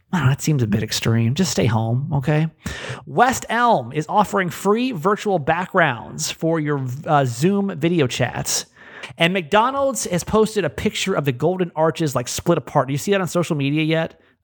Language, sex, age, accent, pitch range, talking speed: English, male, 30-49, American, 130-175 Hz, 185 wpm